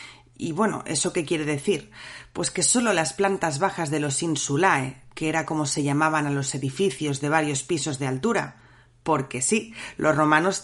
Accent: Spanish